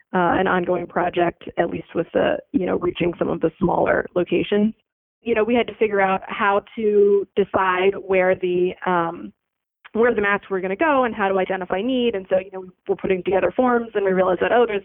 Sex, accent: female, American